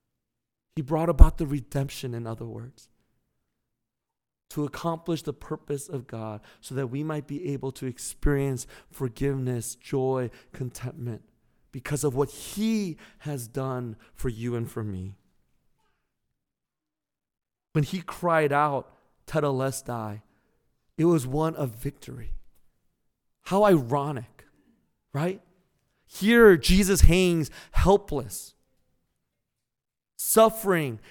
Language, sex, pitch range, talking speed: English, male, 130-180 Hz, 105 wpm